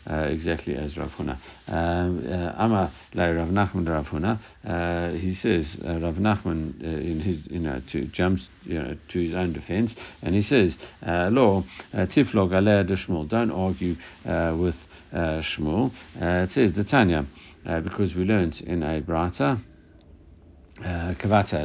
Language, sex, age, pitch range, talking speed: English, male, 60-79, 80-105 Hz, 145 wpm